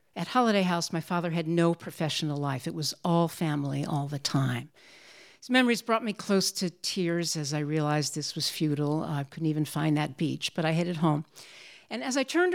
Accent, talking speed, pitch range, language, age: American, 205 wpm, 155-195 Hz, English, 60-79